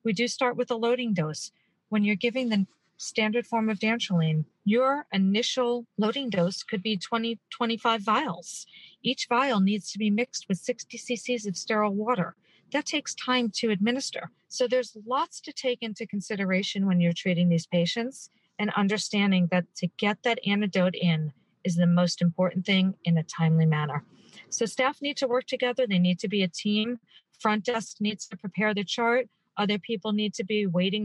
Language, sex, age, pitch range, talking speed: English, female, 40-59, 185-230 Hz, 185 wpm